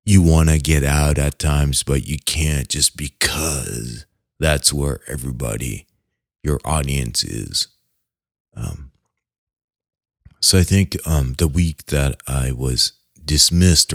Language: English